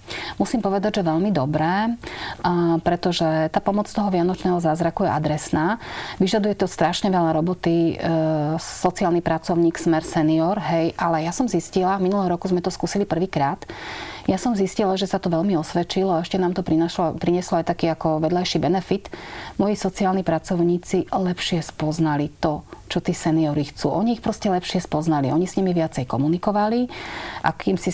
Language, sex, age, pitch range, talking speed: Slovak, female, 30-49, 160-185 Hz, 160 wpm